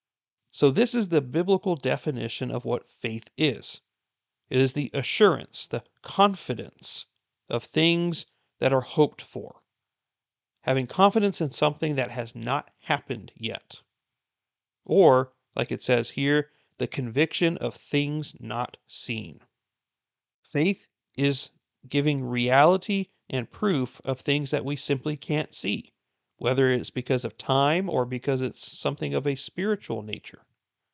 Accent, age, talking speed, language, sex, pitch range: American, 40-59, 130 wpm, English, male, 125-155 Hz